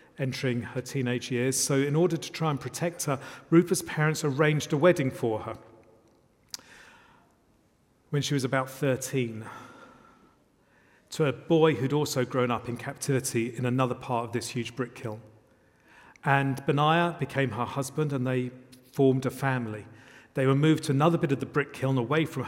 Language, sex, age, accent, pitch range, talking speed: English, male, 40-59, British, 120-145 Hz, 170 wpm